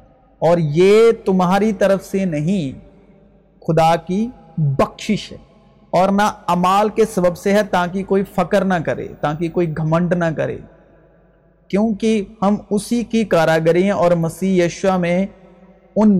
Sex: male